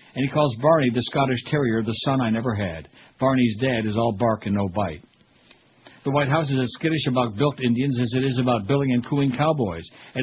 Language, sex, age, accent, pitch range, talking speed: English, male, 60-79, American, 125-145 Hz, 225 wpm